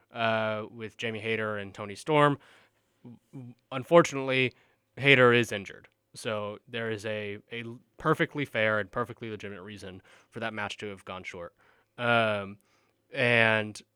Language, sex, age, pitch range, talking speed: English, male, 20-39, 105-130 Hz, 135 wpm